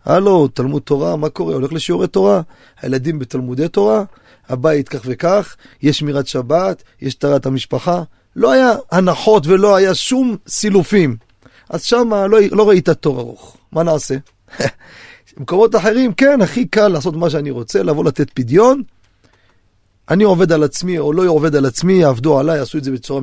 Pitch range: 130-175 Hz